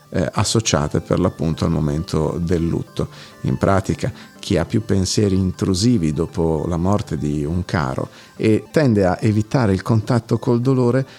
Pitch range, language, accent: 85-120 Hz, Italian, native